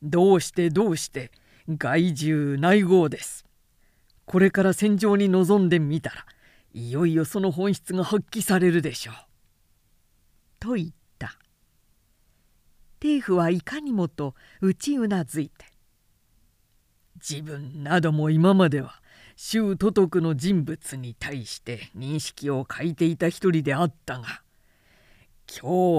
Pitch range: 115-180 Hz